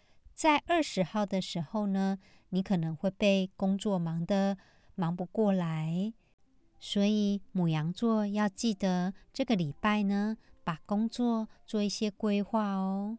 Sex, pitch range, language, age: male, 180-230 Hz, Chinese, 50-69